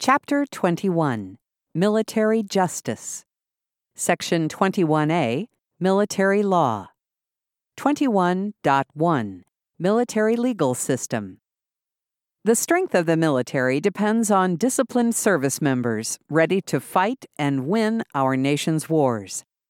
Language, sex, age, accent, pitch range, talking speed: English, female, 50-69, American, 150-215 Hz, 90 wpm